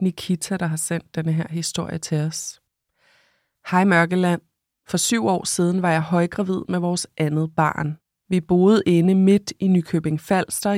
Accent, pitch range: native, 160-185 Hz